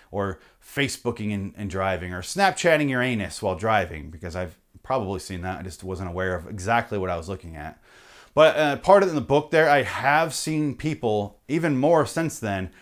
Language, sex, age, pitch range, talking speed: English, male, 30-49, 105-155 Hz, 195 wpm